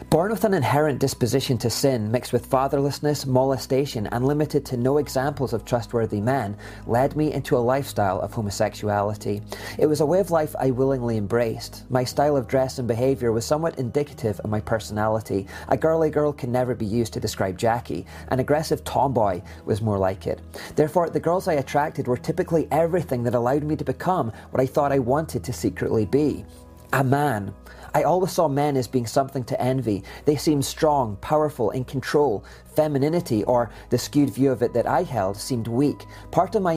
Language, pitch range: English, 110-140 Hz